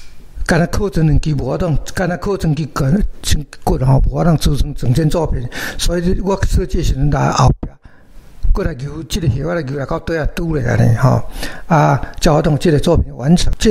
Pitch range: 140-170 Hz